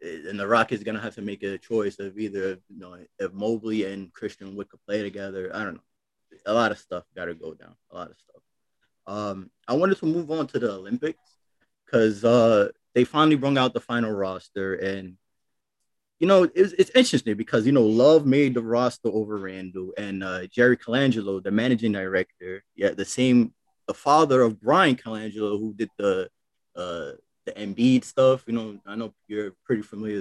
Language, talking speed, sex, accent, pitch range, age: English, 195 wpm, male, American, 105-135 Hz, 20-39